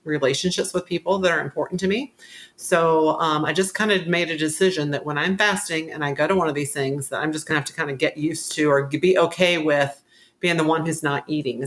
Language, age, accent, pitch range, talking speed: English, 40-59, American, 150-175 Hz, 255 wpm